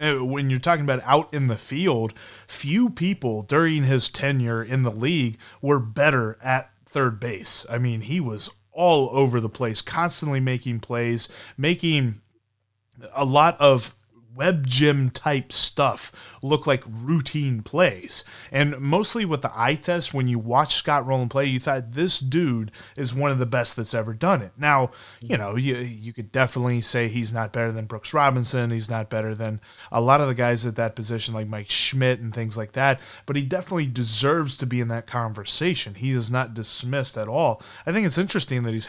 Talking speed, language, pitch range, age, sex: 190 wpm, English, 115-140 Hz, 30-49, male